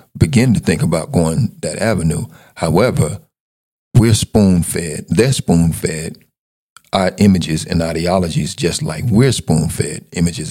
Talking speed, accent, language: 120 wpm, American, English